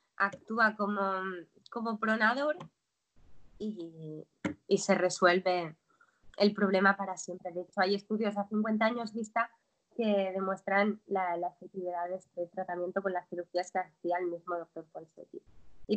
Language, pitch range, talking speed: Spanish, 195-235 Hz, 145 wpm